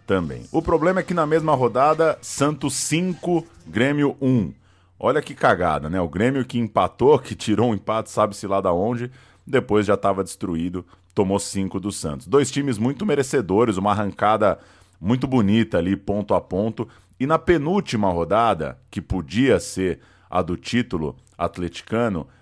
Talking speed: 160 wpm